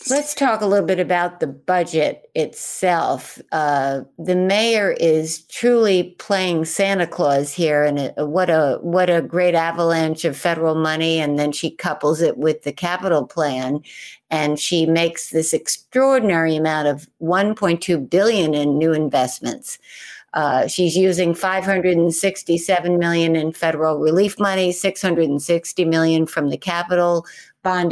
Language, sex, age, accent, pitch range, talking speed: English, female, 60-79, American, 155-190 Hz, 140 wpm